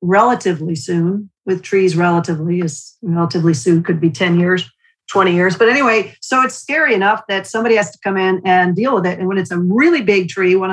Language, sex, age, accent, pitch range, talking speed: English, female, 50-69, American, 180-225 Hz, 215 wpm